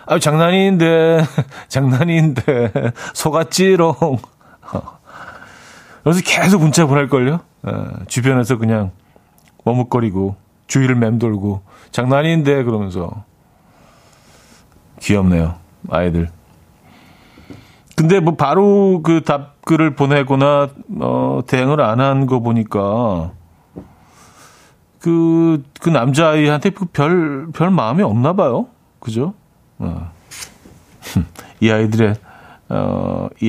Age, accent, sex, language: 40-59, native, male, Korean